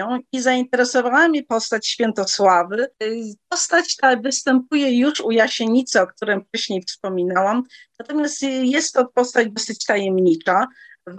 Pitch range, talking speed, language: 190-255 Hz, 115 wpm, Polish